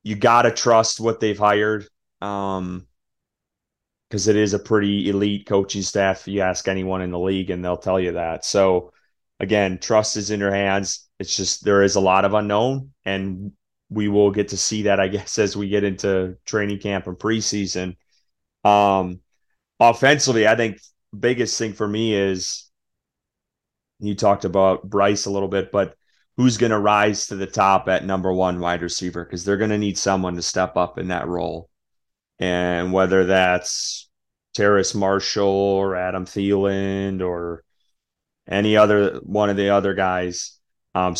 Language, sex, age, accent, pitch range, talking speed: English, male, 30-49, American, 90-105 Hz, 170 wpm